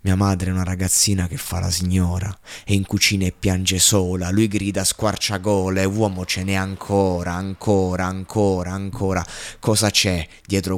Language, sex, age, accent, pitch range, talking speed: Italian, male, 20-39, native, 90-105 Hz, 155 wpm